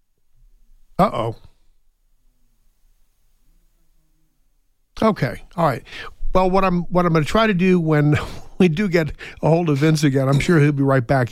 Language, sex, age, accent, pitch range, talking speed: English, male, 50-69, American, 135-160 Hz, 160 wpm